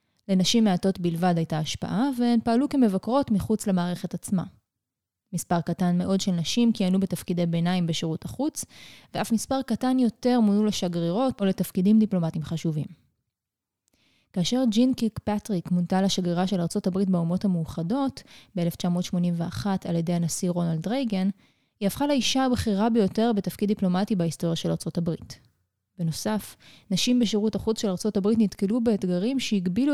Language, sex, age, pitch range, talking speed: Hebrew, female, 20-39, 170-225 Hz, 130 wpm